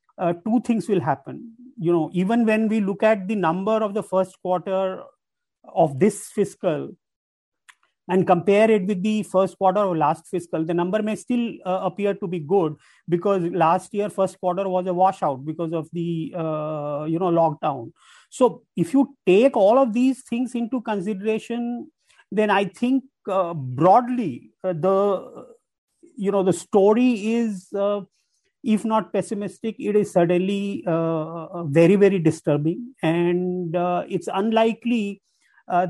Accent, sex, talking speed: Indian, male, 155 wpm